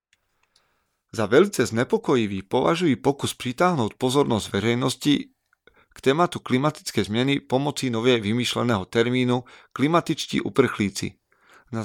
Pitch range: 105-135 Hz